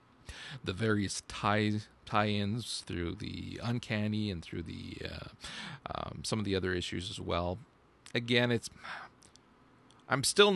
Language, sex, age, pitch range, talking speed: English, male, 40-59, 105-145 Hz, 130 wpm